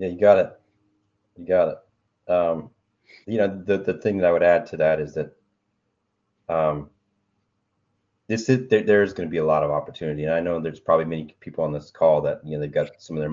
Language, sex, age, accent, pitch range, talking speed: English, male, 30-49, American, 75-95 Hz, 230 wpm